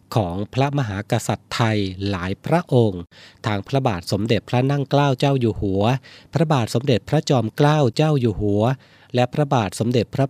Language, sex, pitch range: Thai, male, 110-140 Hz